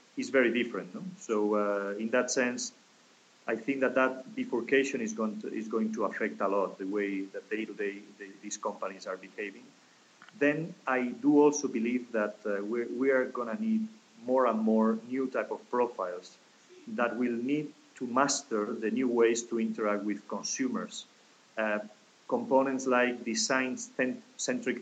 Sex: male